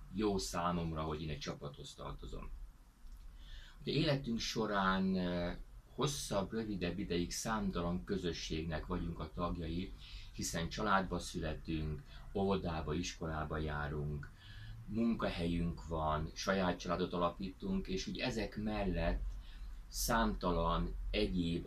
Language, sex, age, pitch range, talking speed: Hungarian, male, 30-49, 80-100 Hz, 95 wpm